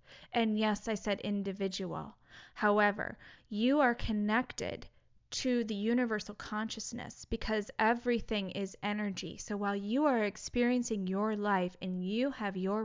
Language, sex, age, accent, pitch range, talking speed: English, female, 20-39, American, 205-240 Hz, 130 wpm